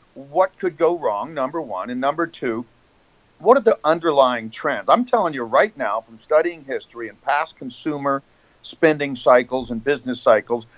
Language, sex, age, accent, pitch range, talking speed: English, male, 50-69, American, 130-175 Hz, 165 wpm